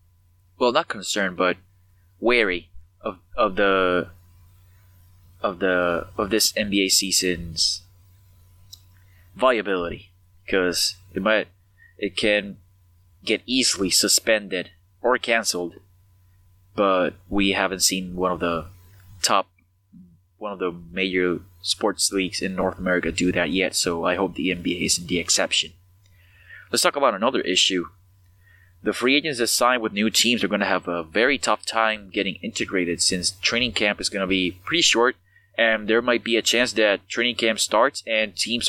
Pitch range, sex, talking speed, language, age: 90-105 Hz, male, 150 wpm, English, 20-39